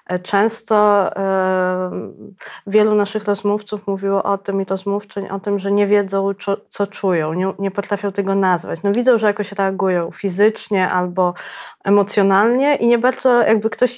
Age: 20-39